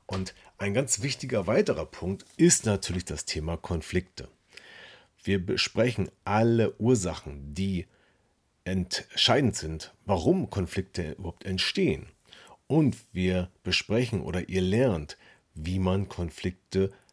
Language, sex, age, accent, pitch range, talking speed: German, male, 40-59, German, 90-110 Hz, 110 wpm